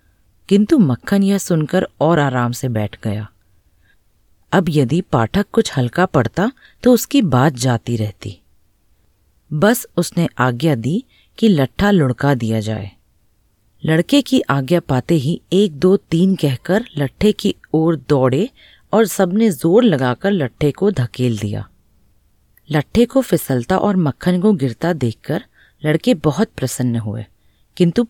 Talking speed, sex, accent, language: 135 wpm, female, native, Hindi